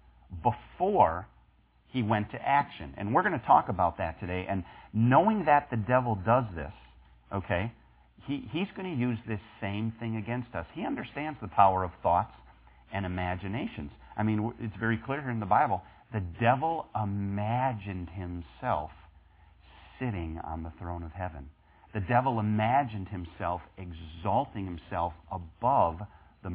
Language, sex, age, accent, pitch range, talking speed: English, male, 40-59, American, 90-115 Hz, 145 wpm